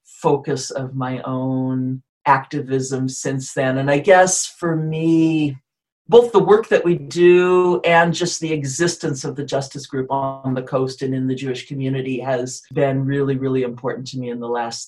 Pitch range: 130-160 Hz